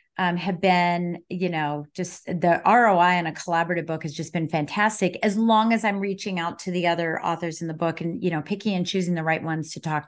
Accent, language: American, English